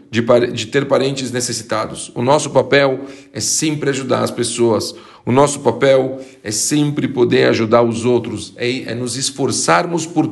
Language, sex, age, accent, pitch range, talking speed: Portuguese, male, 40-59, Brazilian, 120-145 Hz, 155 wpm